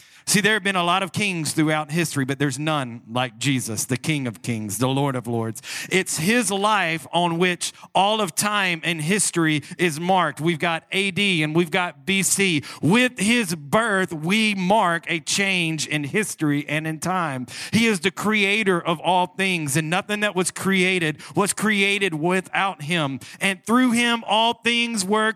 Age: 40-59